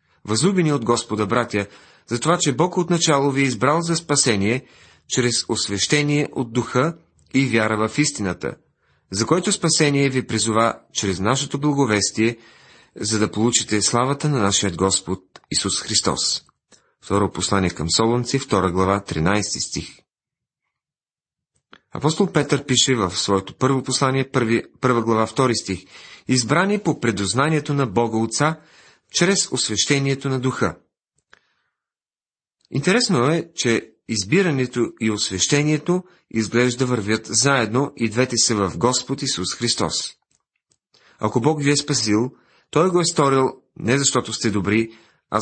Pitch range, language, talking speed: 110-145 Hz, Bulgarian, 130 wpm